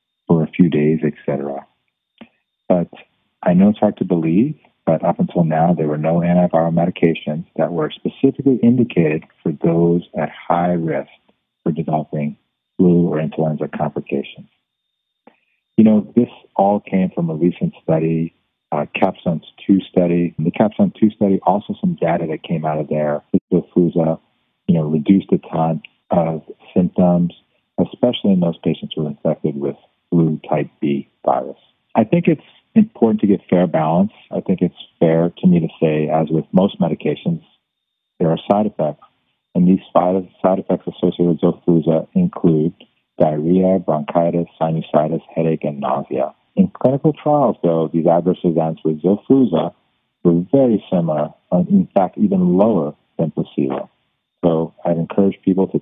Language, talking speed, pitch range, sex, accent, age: English, 155 wpm, 80-95 Hz, male, American, 40-59